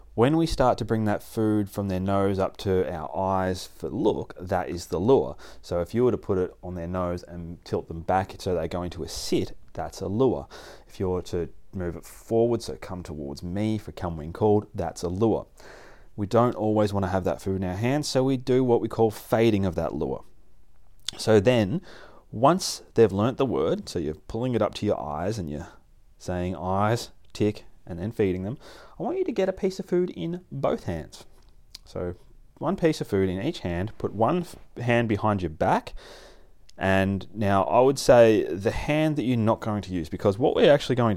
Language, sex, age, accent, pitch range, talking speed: English, male, 30-49, Australian, 90-120 Hz, 215 wpm